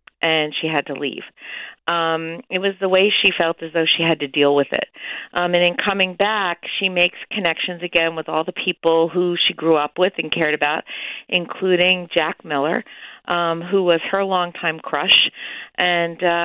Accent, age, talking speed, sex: American, 40-59, 185 wpm, female